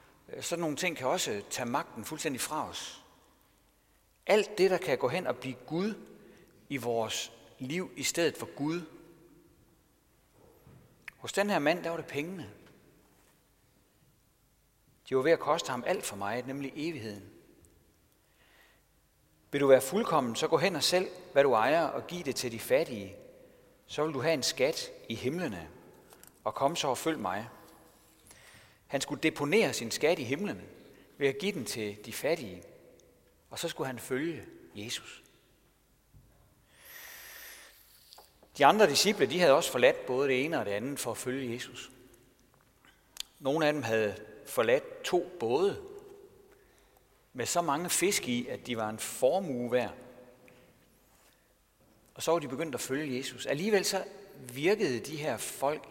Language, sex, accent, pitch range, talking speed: Danish, male, native, 125-195 Hz, 155 wpm